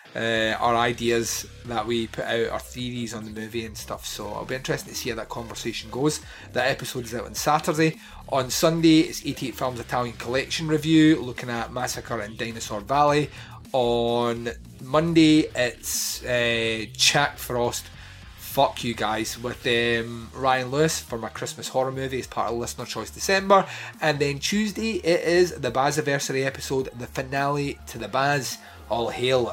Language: English